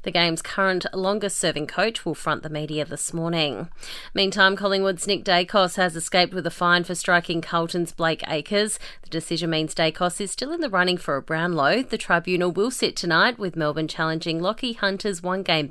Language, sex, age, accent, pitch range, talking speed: English, female, 30-49, Australian, 165-205 Hz, 185 wpm